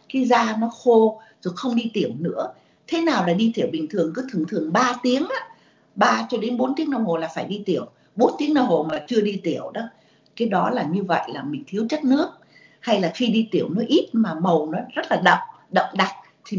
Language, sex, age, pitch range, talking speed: Vietnamese, female, 60-79, 180-255 Hz, 240 wpm